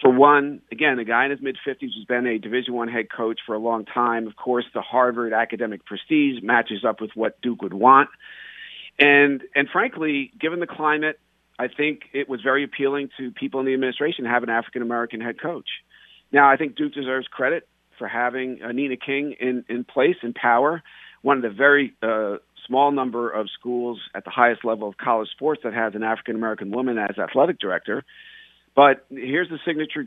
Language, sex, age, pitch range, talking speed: English, male, 50-69, 110-140 Hz, 200 wpm